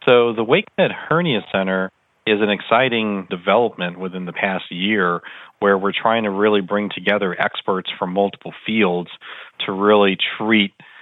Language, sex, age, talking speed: English, male, 40-59, 145 wpm